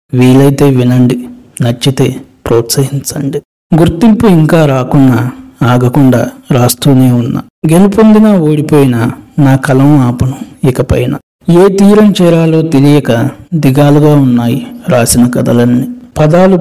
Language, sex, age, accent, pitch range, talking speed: Telugu, male, 60-79, native, 125-155 Hz, 90 wpm